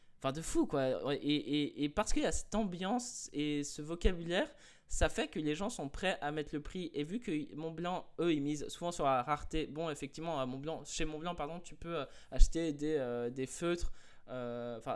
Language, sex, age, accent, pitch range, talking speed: French, male, 20-39, French, 140-170 Hz, 215 wpm